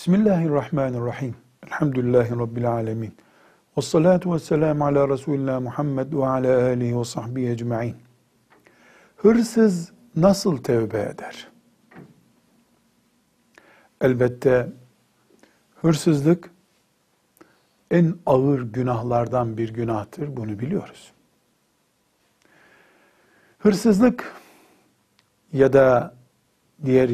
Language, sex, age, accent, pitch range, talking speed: Turkish, male, 60-79, native, 120-165 Hz, 75 wpm